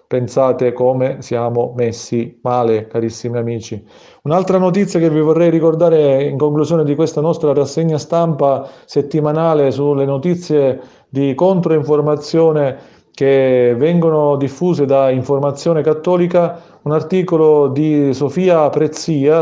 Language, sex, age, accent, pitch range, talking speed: Italian, male, 40-59, native, 135-165 Hz, 110 wpm